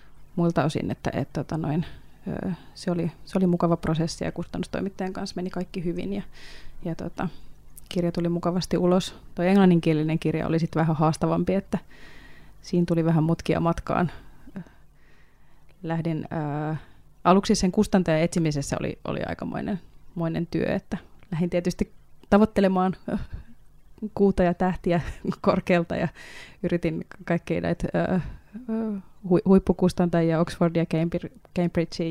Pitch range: 165-190 Hz